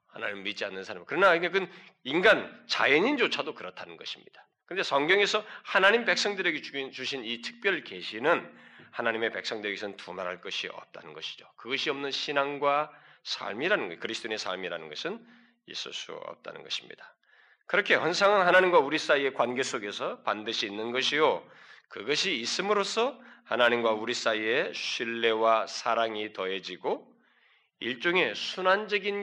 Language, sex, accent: Korean, male, native